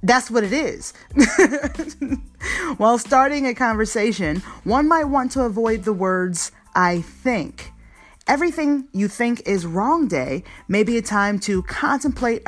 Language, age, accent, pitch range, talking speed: English, 30-49, American, 190-285 Hz, 140 wpm